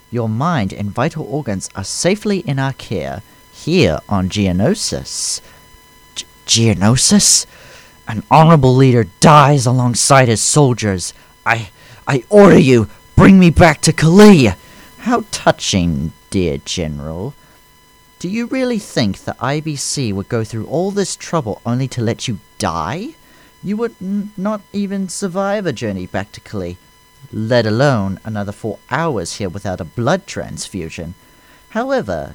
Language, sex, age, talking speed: English, male, 40-59, 135 wpm